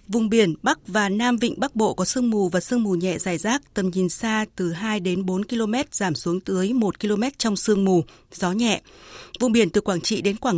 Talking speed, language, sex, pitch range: 240 wpm, Vietnamese, female, 195-235 Hz